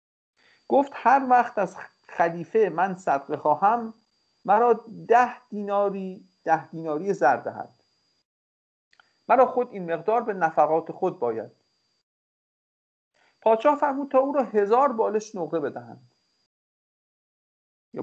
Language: English